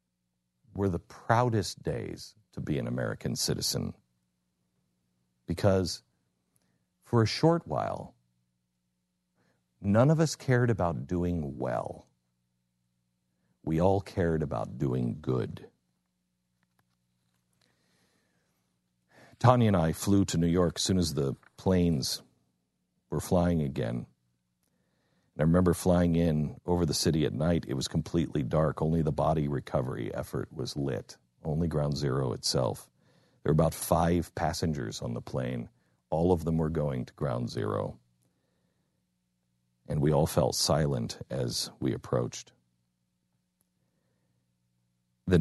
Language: English